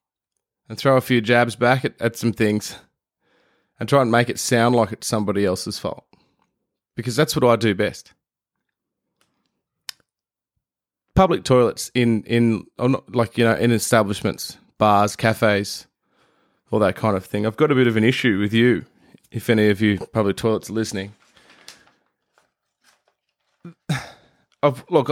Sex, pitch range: male, 105-125 Hz